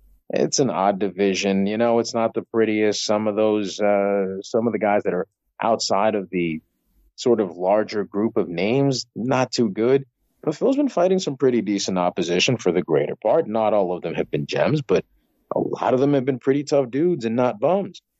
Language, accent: English, American